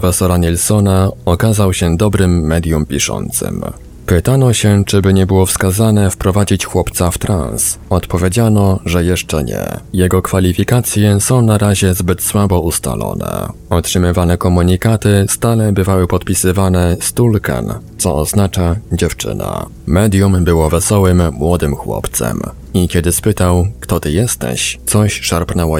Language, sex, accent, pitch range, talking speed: Polish, male, native, 85-100 Hz, 120 wpm